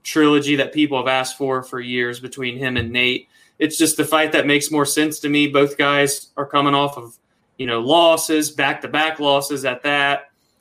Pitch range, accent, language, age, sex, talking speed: 135-160 Hz, American, English, 20-39, male, 200 wpm